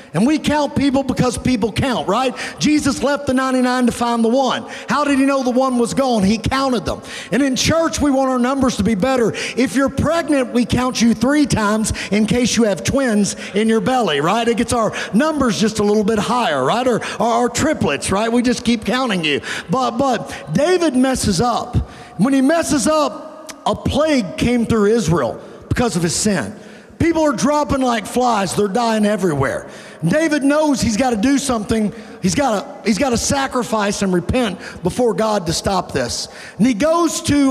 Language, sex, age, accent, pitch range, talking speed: English, male, 50-69, American, 225-275 Hz, 200 wpm